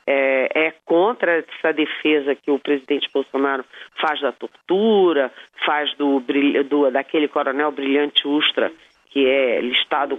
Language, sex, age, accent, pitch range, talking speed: Portuguese, female, 40-59, Brazilian, 150-210 Hz, 110 wpm